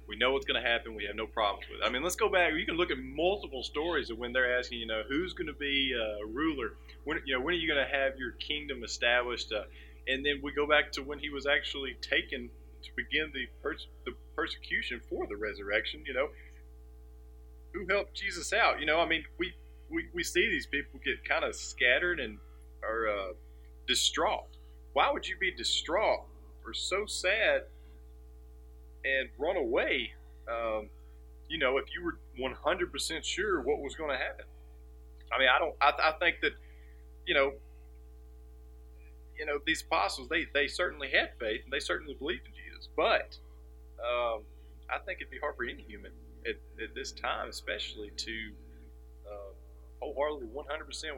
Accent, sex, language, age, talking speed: American, male, English, 40-59, 190 wpm